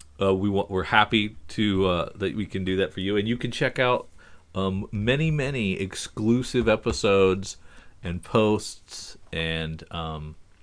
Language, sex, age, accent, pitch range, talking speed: English, male, 40-59, American, 85-105 Hz, 160 wpm